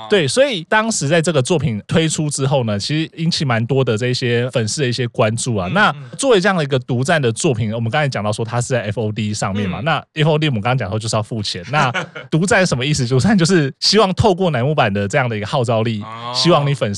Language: Chinese